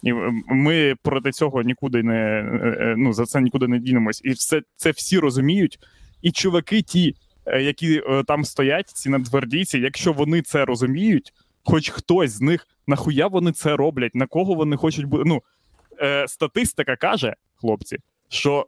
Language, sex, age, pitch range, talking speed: Ukrainian, male, 20-39, 115-145 Hz, 150 wpm